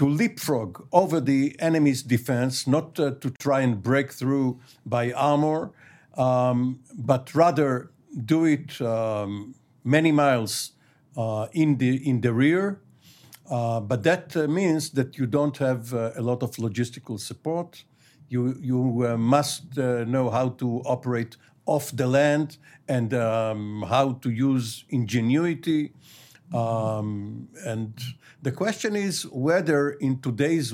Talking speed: 135 wpm